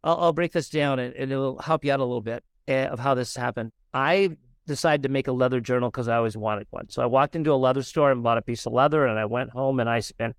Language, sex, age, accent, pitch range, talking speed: English, male, 40-59, American, 130-195 Hz, 285 wpm